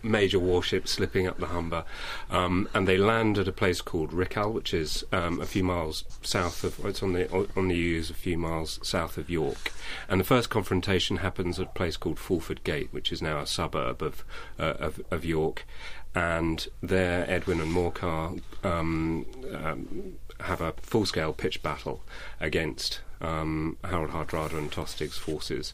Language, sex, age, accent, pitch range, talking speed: English, male, 30-49, British, 80-90 Hz, 175 wpm